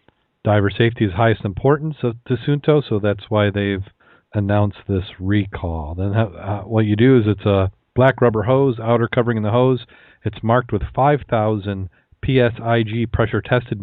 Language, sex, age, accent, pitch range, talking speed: English, male, 40-59, American, 105-115 Hz, 160 wpm